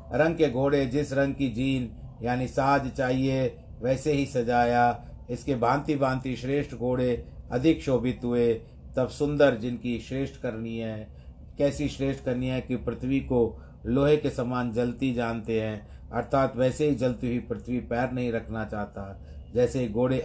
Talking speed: 155 wpm